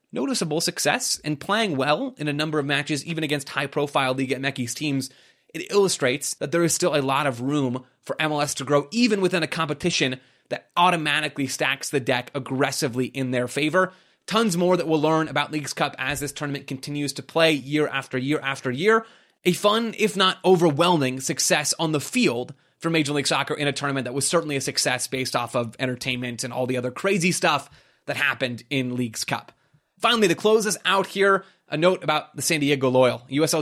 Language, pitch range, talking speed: English, 135-170 Hz, 200 wpm